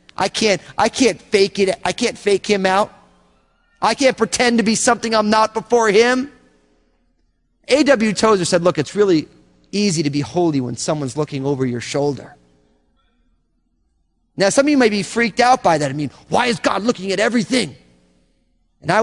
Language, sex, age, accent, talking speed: English, male, 30-49, American, 180 wpm